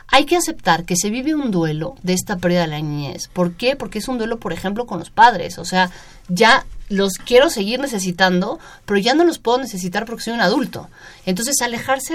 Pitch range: 175-225 Hz